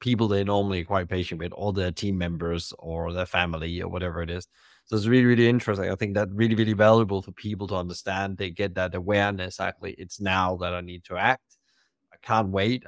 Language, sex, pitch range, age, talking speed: English, male, 90-110 Hz, 30-49, 220 wpm